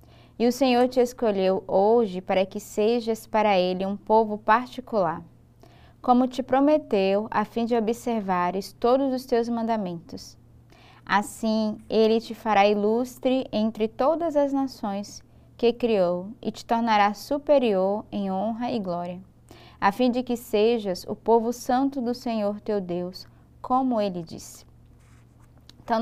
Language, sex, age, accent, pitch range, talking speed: Portuguese, female, 20-39, Brazilian, 215-270 Hz, 140 wpm